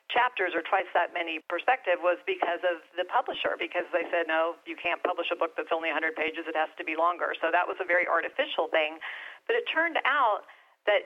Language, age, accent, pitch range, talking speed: English, 40-59, American, 175-245 Hz, 220 wpm